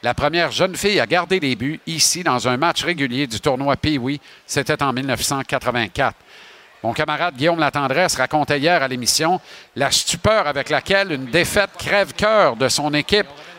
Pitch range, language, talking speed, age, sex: 135-175 Hz, French, 165 wpm, 50-69, male